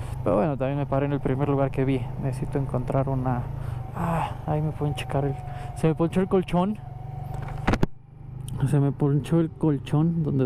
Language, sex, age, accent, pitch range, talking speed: Spanish, male, 20-39, Mexican, 125-140 Hz, 180 wpm